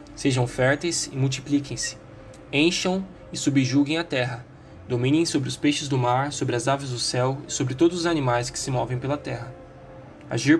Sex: male